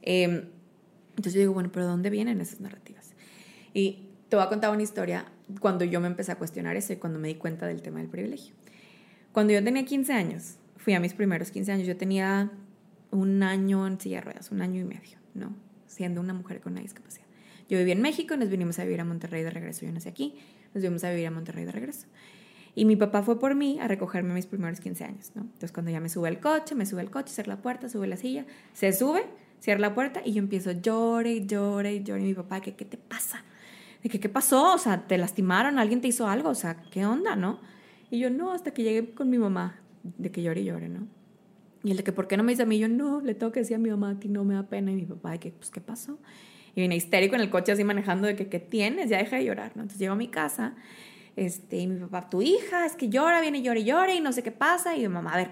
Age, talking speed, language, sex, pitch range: 20-39, 270 wpm, Spanish, female, 185-230 Hz